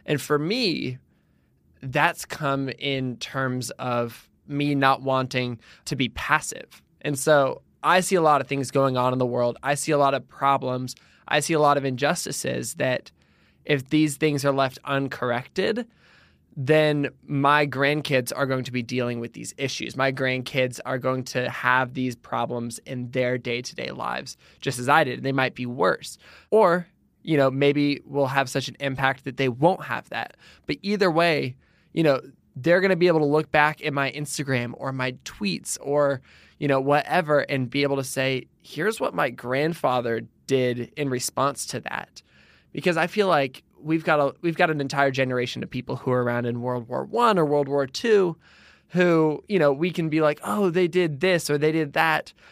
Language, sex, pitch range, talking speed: English, male, 125-155 Hz, 190 wpm